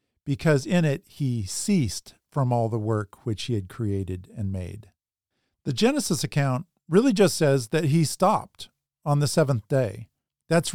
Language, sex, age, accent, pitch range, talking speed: English, male, 50-69, American, 125-160 Hz, 160 wpm